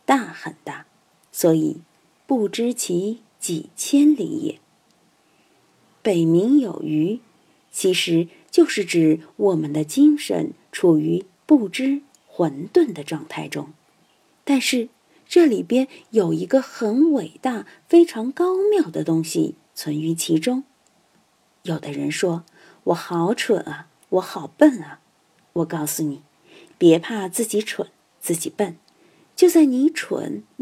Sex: female